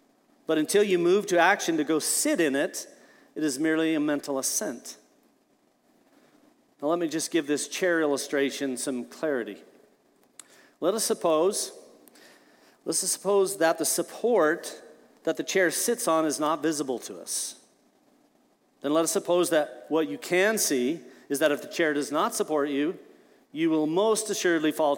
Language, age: English, 50-69